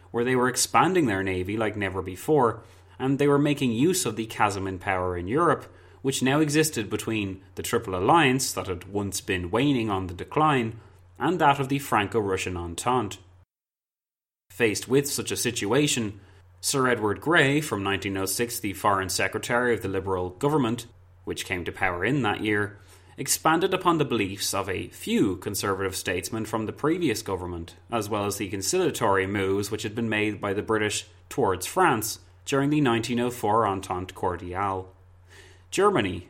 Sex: male